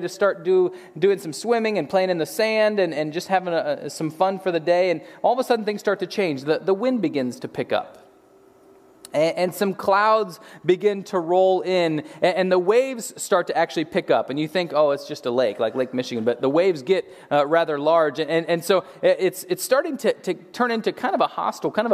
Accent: American